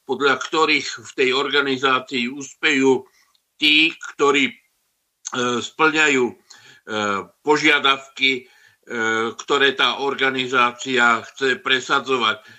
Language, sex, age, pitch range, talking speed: Slovak, male, 60-79, 120-140 Hz, 70 wpm